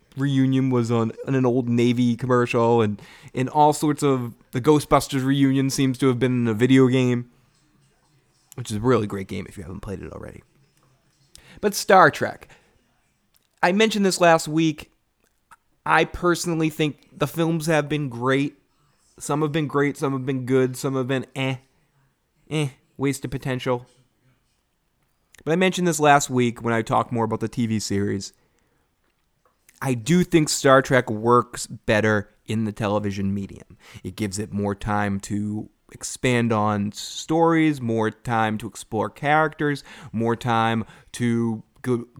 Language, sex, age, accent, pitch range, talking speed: English, male, 20-39, American, 115-145 Hz, 160 wpm